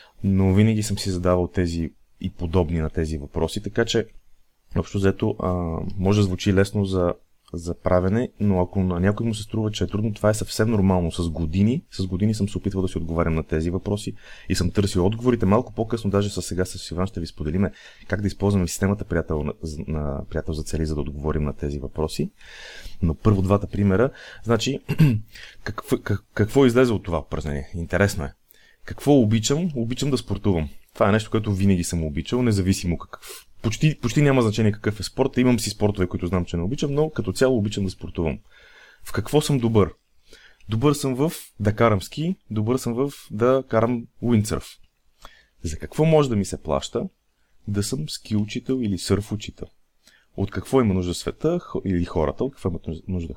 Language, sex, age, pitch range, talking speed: Bulgarian, male, 30-49, 90-115 Hz, 190 wpm